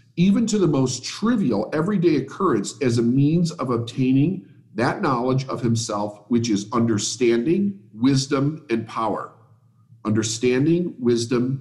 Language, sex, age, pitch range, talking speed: English, male, 50-69, 120-155 Hz, 125 wpm